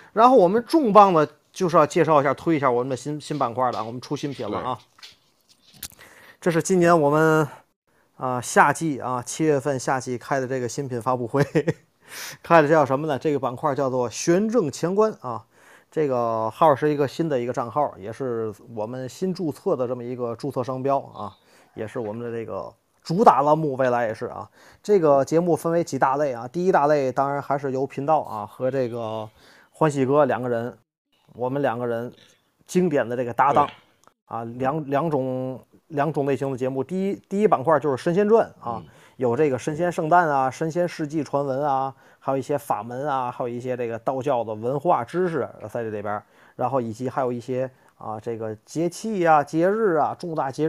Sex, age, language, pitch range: male, 20-39, Chinese, 125-160 Hz